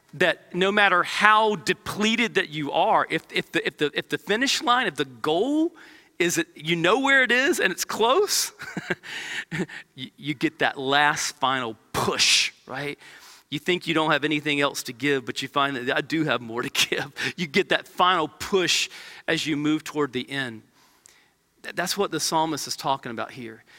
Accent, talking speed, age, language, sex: American, 190 wpm, 40-59, English, male